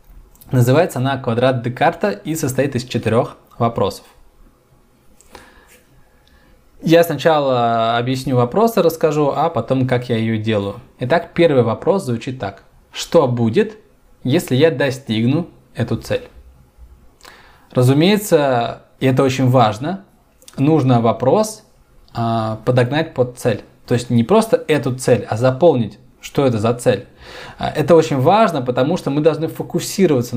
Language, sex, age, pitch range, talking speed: Russian, male, 20-39, 120-165 Hz, 125 wpm